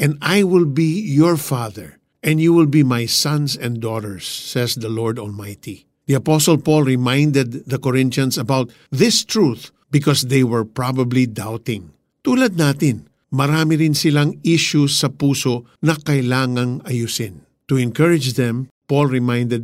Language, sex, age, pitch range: Filipino, male, 50-69, 120-155 Hz